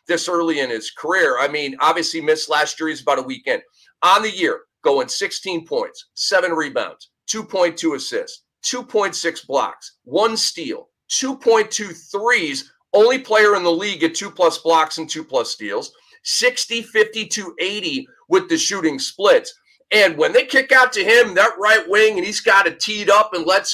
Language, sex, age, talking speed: English, male, 40-59, 175 wpm